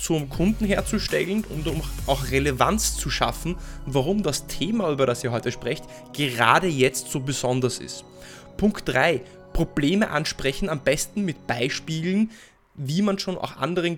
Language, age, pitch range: German, 20-39, 130-175 Hz